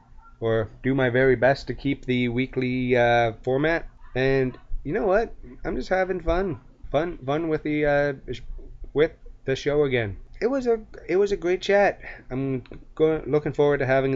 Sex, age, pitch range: male, 20-39, 120-145 Hz